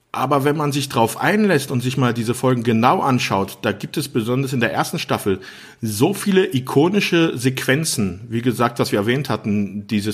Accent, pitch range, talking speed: German, 110-140 Hz, 190 wpm